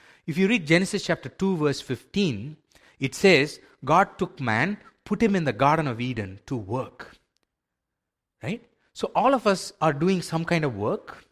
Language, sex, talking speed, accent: English, male, 175 wpm, Indian